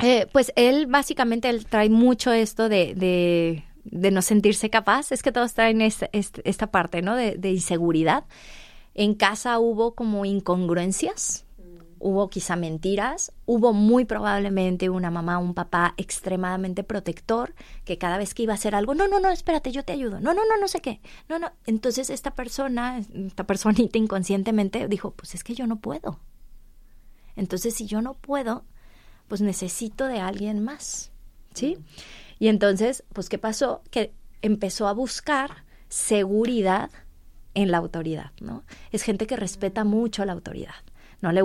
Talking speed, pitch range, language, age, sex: 165 wpm, 185-245 Hz, Spanish, 20-39, female